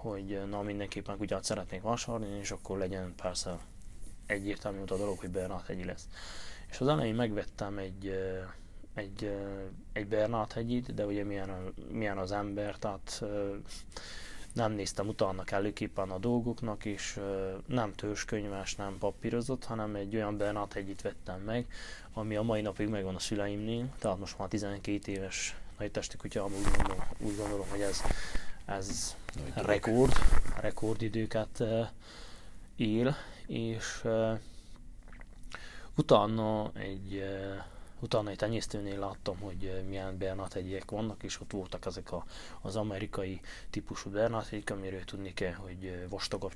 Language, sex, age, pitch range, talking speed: Hungarian, male, 20-39, 95-110 Hz, 130 wpm